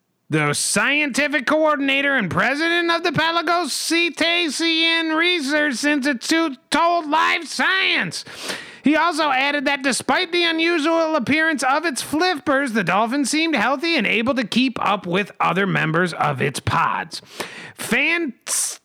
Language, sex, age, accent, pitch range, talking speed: English, male, 30-49, American, 235-320 Hz, 125 wpm